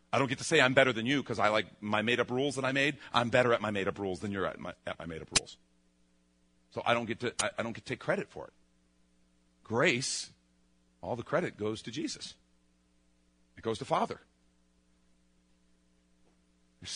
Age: 40-59